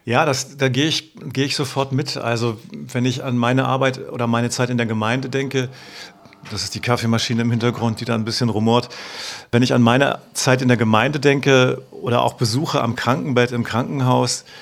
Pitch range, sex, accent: 115-130 Hz, male, German